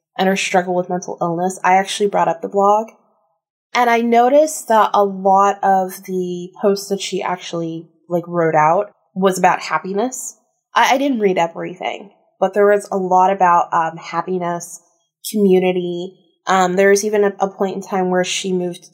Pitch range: 165-195 Hz